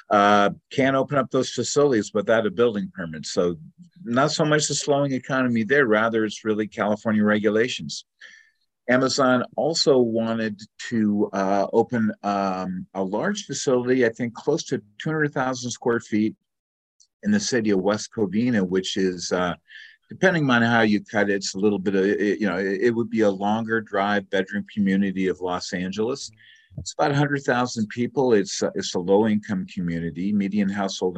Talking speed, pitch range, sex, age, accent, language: 165 wpm, 100-125 Hz, male, 50-69, American, English